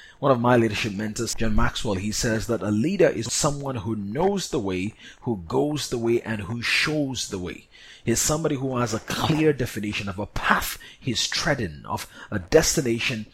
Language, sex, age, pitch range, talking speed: English, male, 30-49, 105-140 Hz, 190 wpm